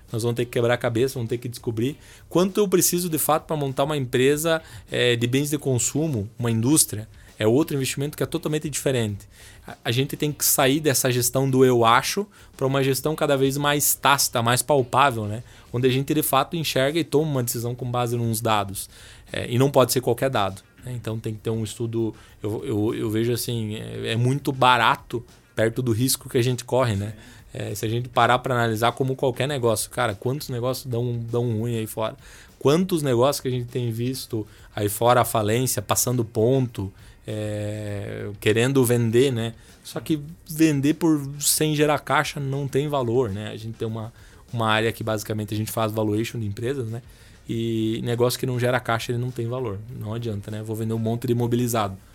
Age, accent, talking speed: 20-39, Brazilian, 205 wpm